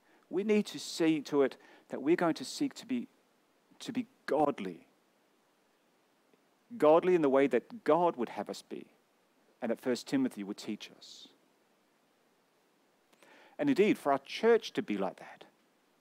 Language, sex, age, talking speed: English, male, 40-59, 155 wpm